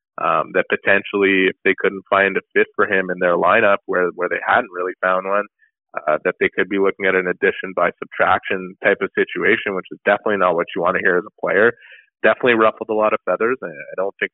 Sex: male